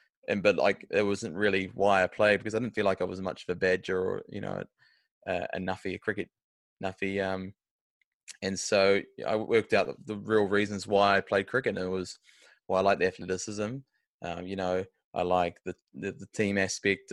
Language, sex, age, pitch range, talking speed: English, male, 20-39, 95-105 Hz, 215 wpm